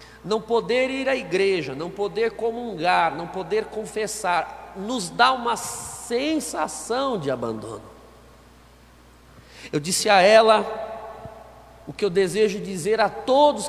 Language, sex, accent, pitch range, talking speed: Portuguese, male, Brazilian, 145-210 Hz, 125 wpm